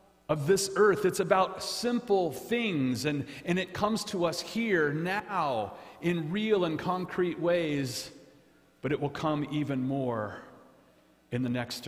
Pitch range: 145-190 Hz